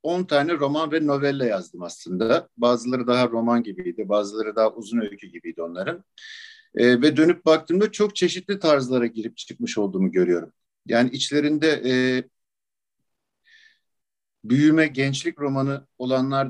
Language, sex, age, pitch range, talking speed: Turkish, male, 50-69, 120-165 Hz, 125 wpm